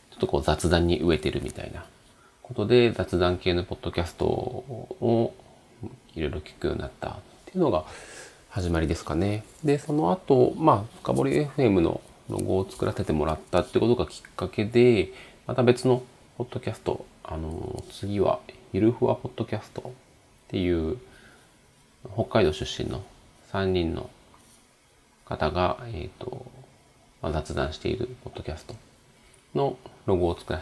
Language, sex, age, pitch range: Japanese, male, 40-59, 85-125 Hz